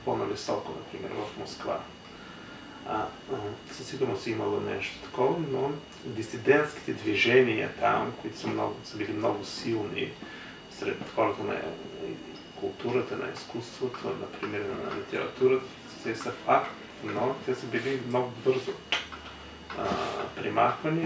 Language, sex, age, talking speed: Bulgarian, male, 30-49, 115 wpm